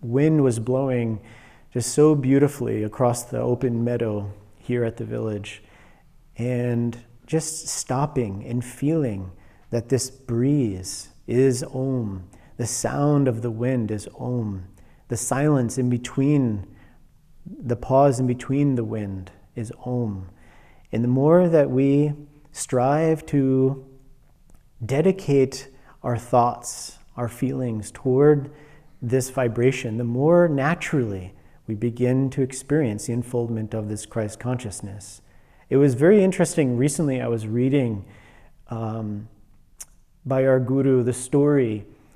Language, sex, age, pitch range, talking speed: English, male, 40-59, 115-135 Hz, 120 wpm